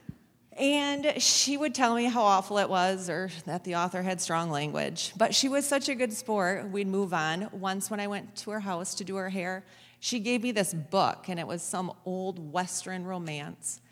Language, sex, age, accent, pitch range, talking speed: English, female, 40-59, American, 170-220 Hz, 210 wpm